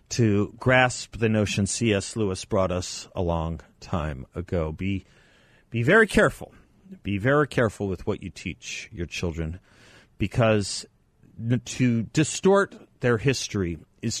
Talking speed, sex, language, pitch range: 130 wpm, male, English, 95-130 Hz